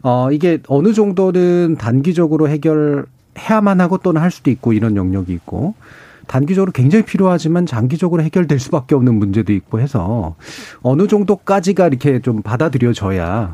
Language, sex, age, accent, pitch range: Korean, male, 40-59, native, 115-165 Hz